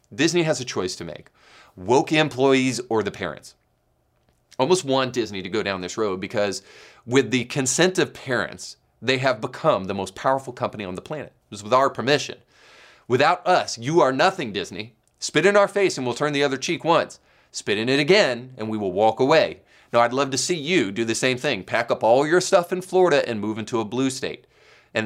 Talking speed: 220 wpm